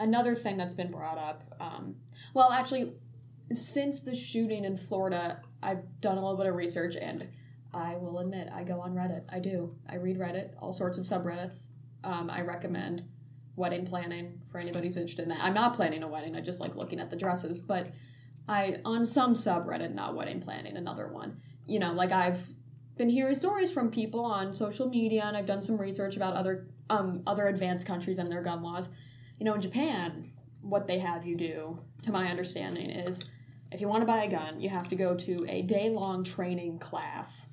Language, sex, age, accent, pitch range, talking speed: English, female, 10-29, American, 165-200 Hz, 205 wpm